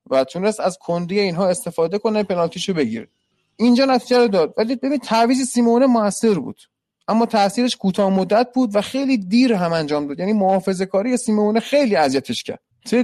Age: 30-49